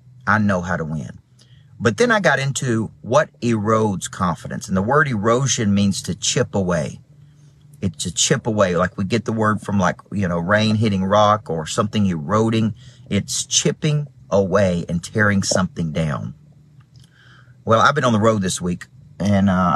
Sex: male